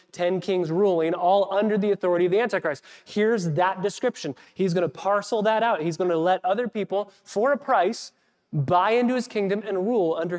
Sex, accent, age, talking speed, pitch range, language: male, American, 20-39, 200 wpm, 165-195 Hz, English